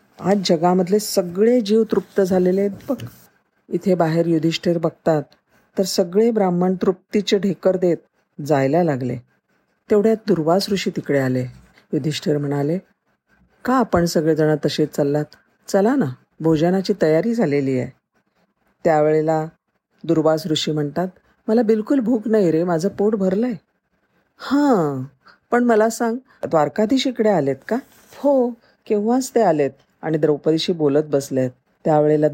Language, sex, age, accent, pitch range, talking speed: Marathi, female, 40-59, native, 150-200 Hz, 120 wpm